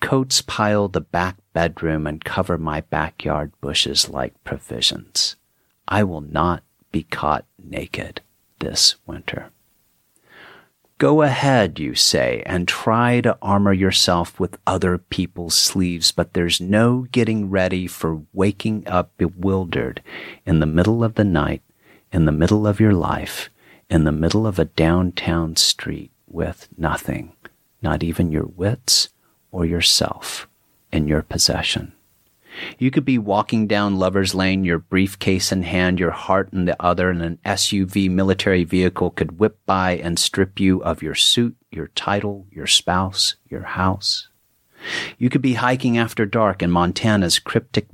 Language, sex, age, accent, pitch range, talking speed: English, male, 40-59, American, 85-105 Hz, 145 wpm